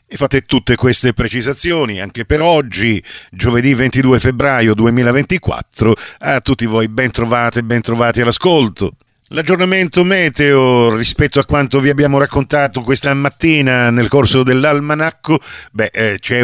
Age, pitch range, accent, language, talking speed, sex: 50-69, 115-135 Hz, native, Italian, 125 wpm, male